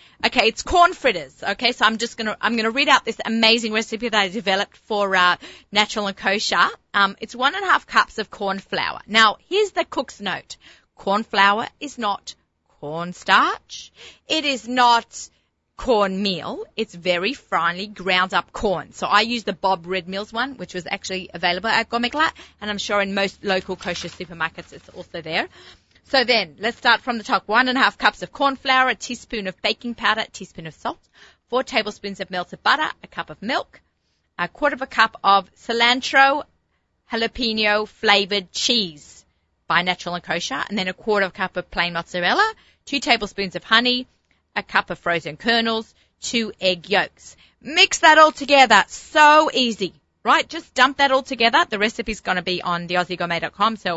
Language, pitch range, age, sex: English, 185-240 Hz, 30-49, female